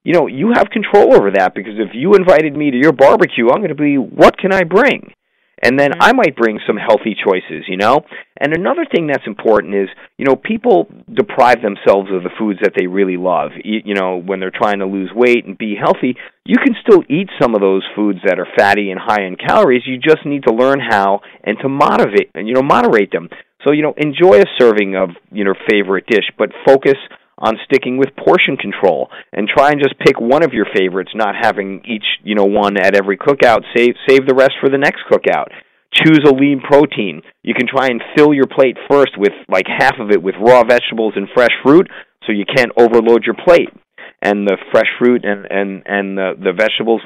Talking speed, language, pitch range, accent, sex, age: 225 wpm, English, 100-140 Hz, American, male, 40-59